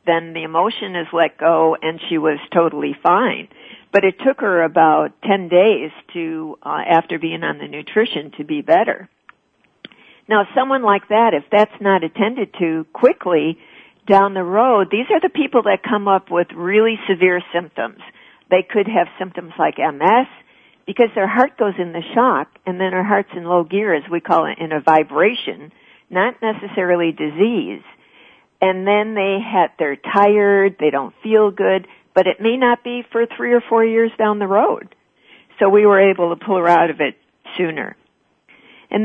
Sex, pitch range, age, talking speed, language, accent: female, 170-215 Hz, 60-79, 185 wpm, English, American